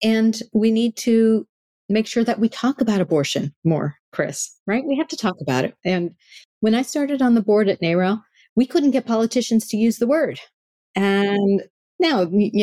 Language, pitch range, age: English, 165-225 Hz, 50-69